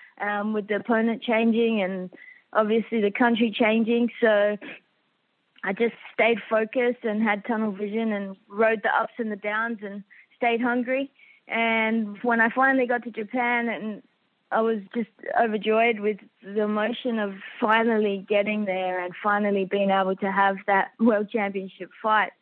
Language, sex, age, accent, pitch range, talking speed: English, female, 20-39, Australian, 205-250 Hz, 155 wpm